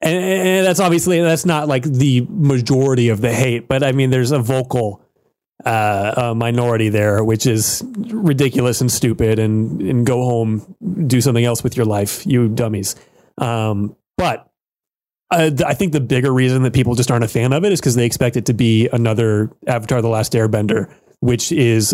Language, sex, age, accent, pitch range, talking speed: English, male, 30-49, American, 115-135 Hz, 185 wpm